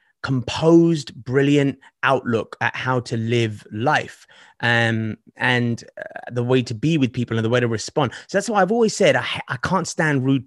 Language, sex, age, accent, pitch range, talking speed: English, male, 30-49, British, 120-150 Hz, 190 wpm